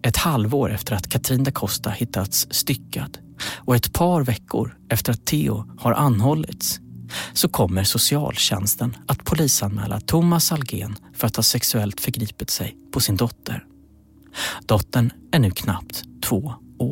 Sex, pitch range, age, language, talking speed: male, 105-130 Hz, 30-49, Swedish, 140 wpm